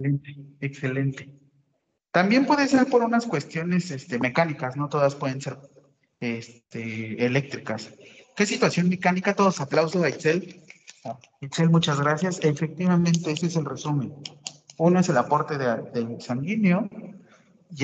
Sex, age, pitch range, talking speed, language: male, 40-59, 140-185 Hz, 130 wpm, Spanish